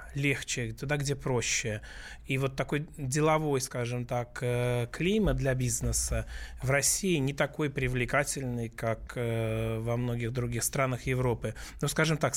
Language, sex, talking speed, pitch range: Russian, male, 130 wpm, 125-155 Hz